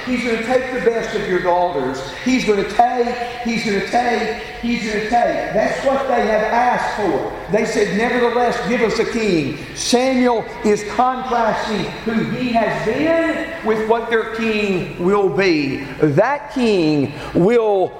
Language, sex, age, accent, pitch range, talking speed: English, male, 50-69, American, 190-255 Hz, 165 wpm